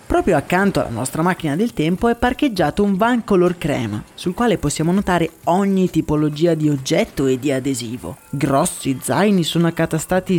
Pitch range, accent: 145-185 Hz, native